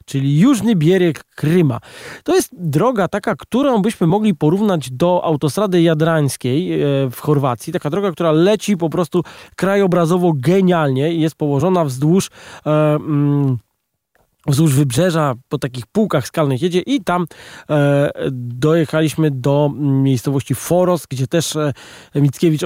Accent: native